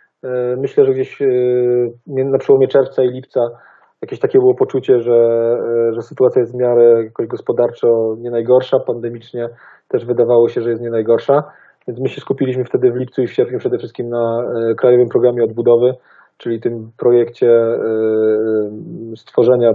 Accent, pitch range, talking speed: native, 115-145 Hz, 150 wpm